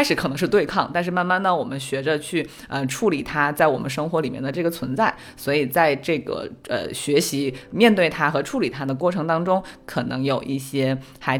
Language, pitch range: Chinese, 135-180 Hz